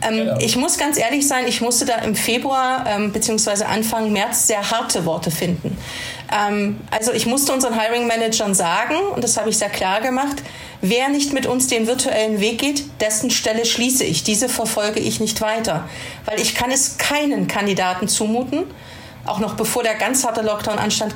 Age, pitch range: 40-59, 210-260 Hz